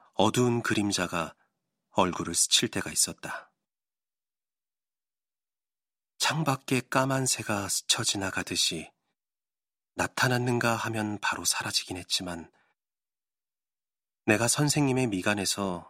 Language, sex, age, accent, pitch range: Korean, male, 40-59, native, 95-120 Hz